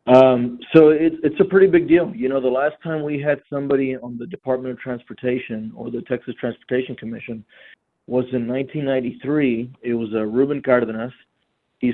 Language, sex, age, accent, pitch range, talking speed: English, male, 40-59, American, 120-140 Hz, 170 wpm